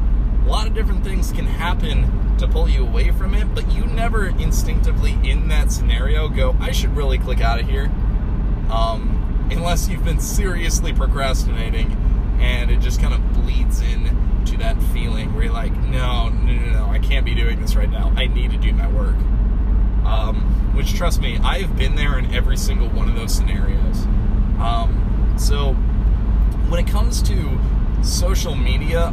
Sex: male